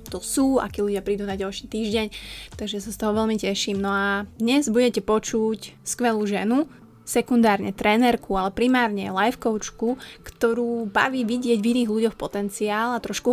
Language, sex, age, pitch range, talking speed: Slovak, female, 20-39, 210-235 Hz, 160 wpm